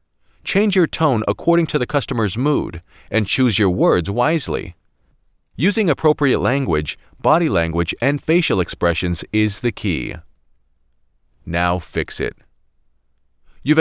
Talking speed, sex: 120 wpm, male